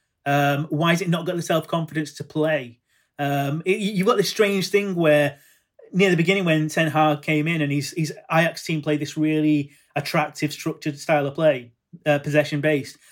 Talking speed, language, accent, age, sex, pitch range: 190 wpm, English, British, 30-49, male, 150-170 Hz